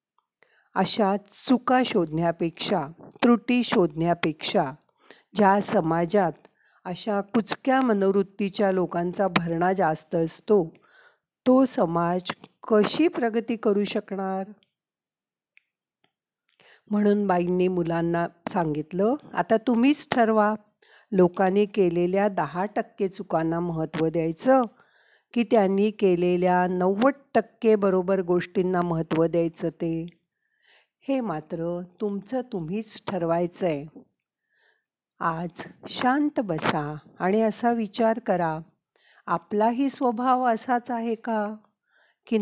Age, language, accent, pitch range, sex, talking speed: 50-69, Marathi, native, 175-225 Hz, female, 85 wpm